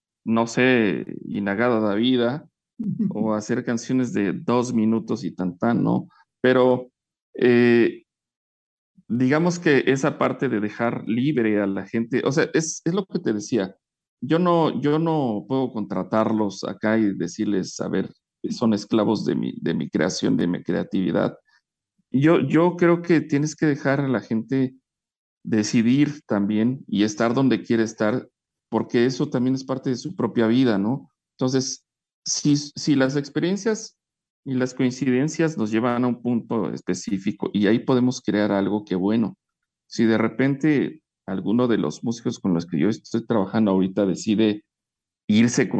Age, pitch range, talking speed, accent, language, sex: 50-69, 110-145 Hz, 155 wpm, Mexican, English, male